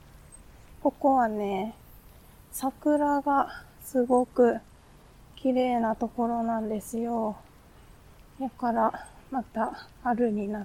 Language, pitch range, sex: Japanese, 205-255 Hz, female